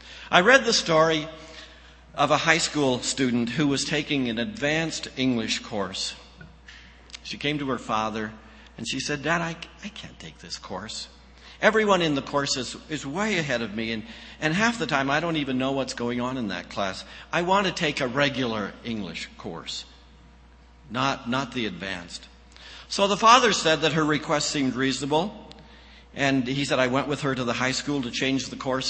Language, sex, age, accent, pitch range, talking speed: English, male, 50-69, American, 110-155 Hz, 190 wpm